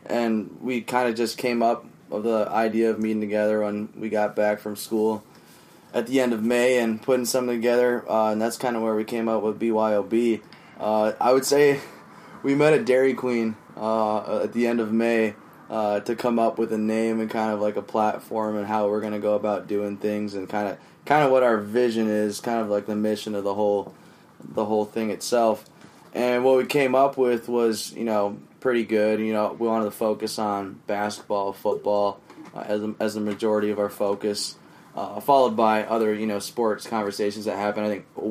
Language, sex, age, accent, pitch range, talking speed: English, male, 10-29, American, 105-120 Hz, 220 wpm